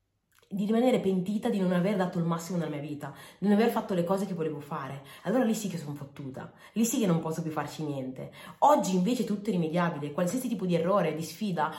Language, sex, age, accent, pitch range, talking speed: Italian, female, 30-49, native, 170-230 Hz, 240 wpm